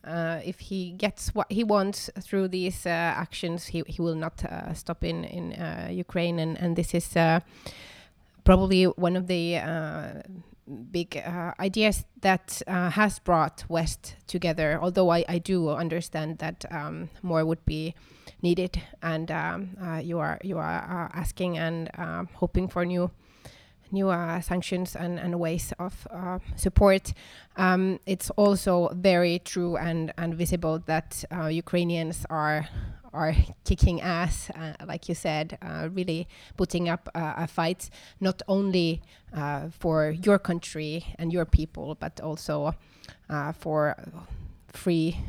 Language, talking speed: Finnish, 150 wpm